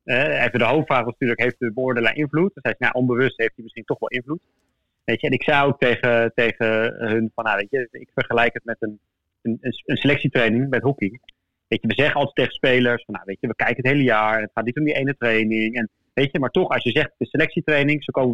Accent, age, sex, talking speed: Dutch, 30-49, male, 255 wpm